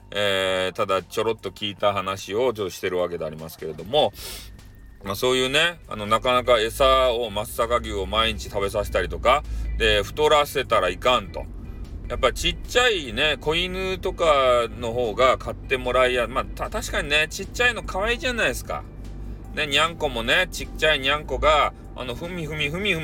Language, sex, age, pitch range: Japanese, male, 30-49, 105-155 Hz